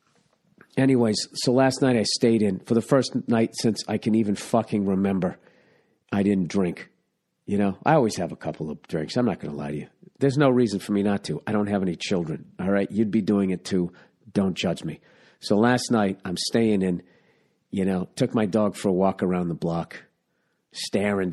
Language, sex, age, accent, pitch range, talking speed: English, male, 50-69, American, 85-110 Hz, 215 wpm